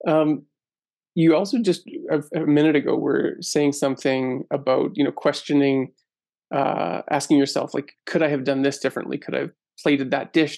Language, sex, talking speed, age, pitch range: English, male, 175 wpm, 20-39, 140-175 Hz